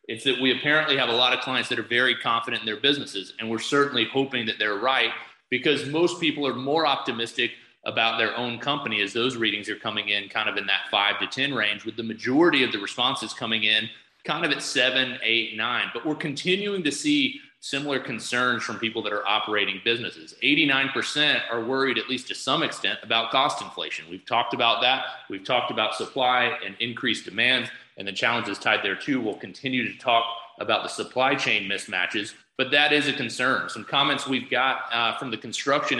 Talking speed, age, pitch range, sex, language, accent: 205 wpm, 30-49, 115-140 Hz, male, English, American